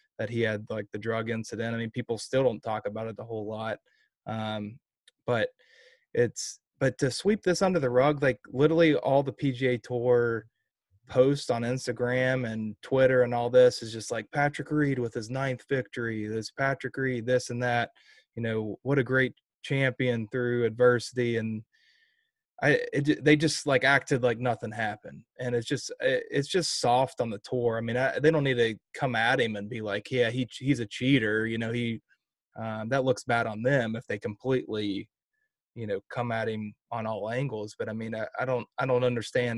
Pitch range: 110-135 Hz